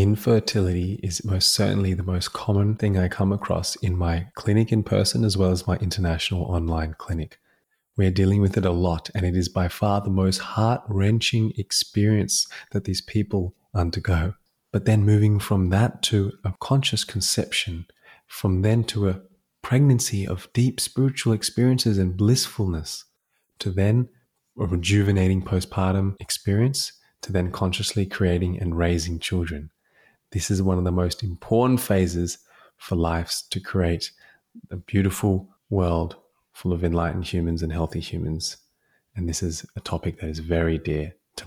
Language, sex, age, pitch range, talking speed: English, male, 20-39, 90-105 Hz, 155 wpm